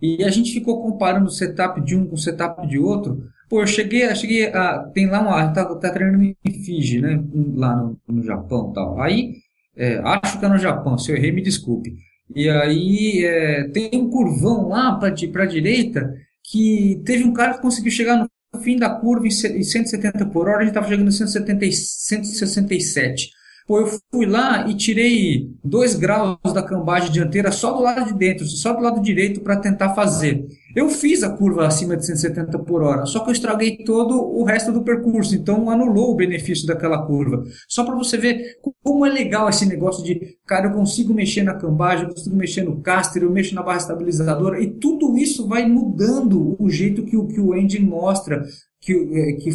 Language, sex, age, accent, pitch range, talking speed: Portuguese, male, 20-39, Brazilian, 165-220 Hz, 205 wpm